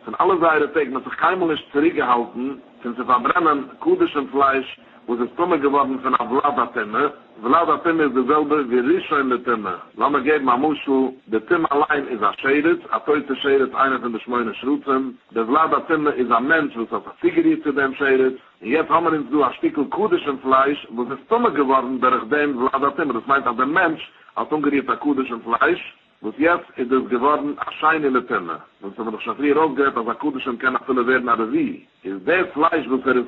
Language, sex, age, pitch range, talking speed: English, male, 50-69, 125-150 Hz, 160 wpm